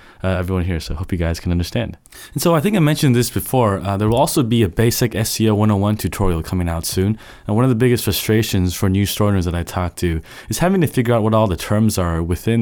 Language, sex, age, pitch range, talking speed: English, male, 20-39, 90-110 Hz, 265 wpm